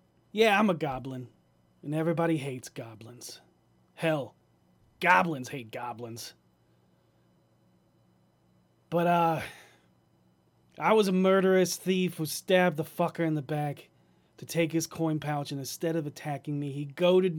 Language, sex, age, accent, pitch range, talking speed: English, male, 30-49, American, 115-180 Hz, 130 wpm